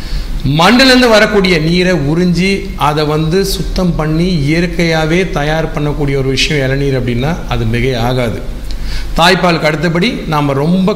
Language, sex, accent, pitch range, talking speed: Tamil, male, native, 145-195 Hz, 120 wpm